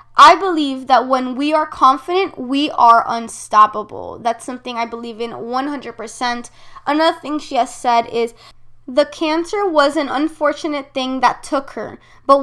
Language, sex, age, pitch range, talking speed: English, female, 20-39, 235-305 Hz, 155 wpm